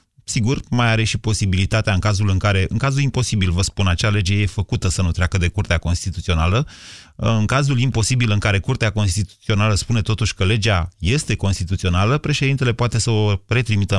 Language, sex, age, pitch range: Romanian, male, 30-49, 95-115 Hz